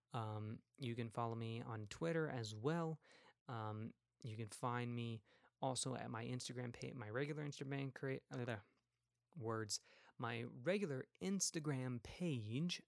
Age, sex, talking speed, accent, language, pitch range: 20-39, male, 135 wpm, American, English, 115-140 Hz